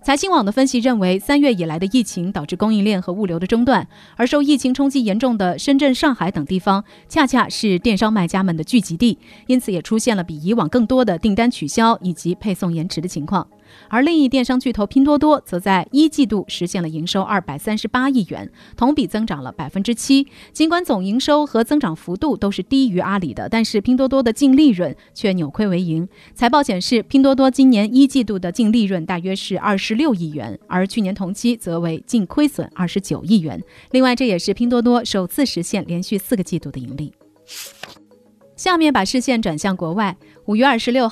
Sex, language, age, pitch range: female, Chinese, 30-49, 180-255 Hz